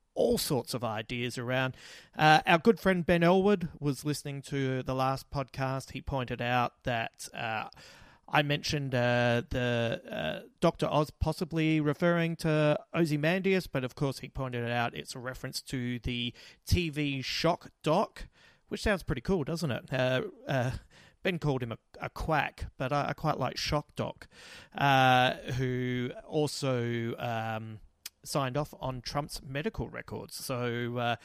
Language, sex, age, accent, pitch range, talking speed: English, male, 30-49, Australian, 125-155 Hz, 155 wpm